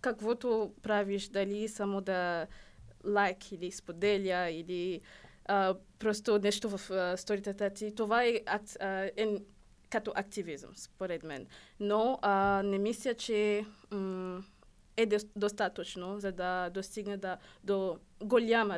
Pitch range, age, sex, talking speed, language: 190-215 Hz, 20-39, female, 130 wpm, Bulgarian